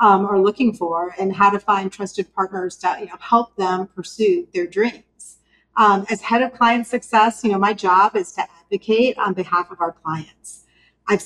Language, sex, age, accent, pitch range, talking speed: English, female, 40-59, American, 185-225 Hz, 185 wpm